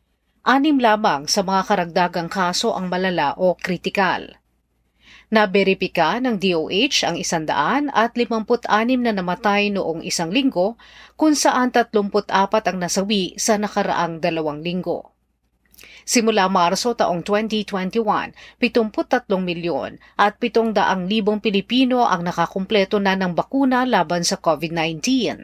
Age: 40-59